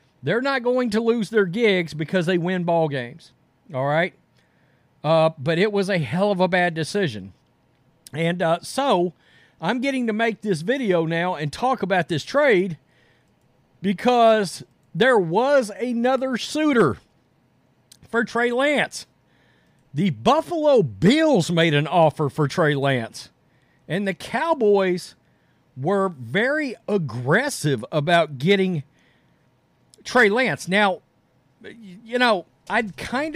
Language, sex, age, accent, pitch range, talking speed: English, male, 50-69, American, 155-205 Hz, 130 wpm